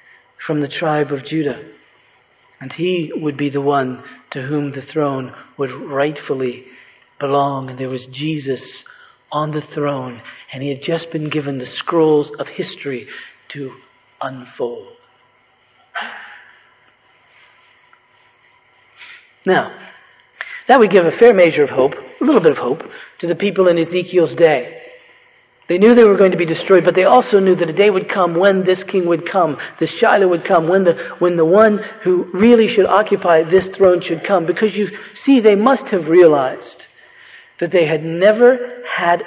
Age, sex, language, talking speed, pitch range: 50-69, male, English, 165 wpm, 150-215 Hz